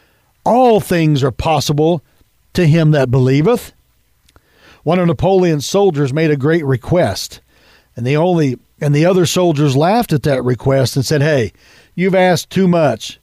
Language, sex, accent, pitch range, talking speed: English, male, American, 145-190 Hz, 155 wpm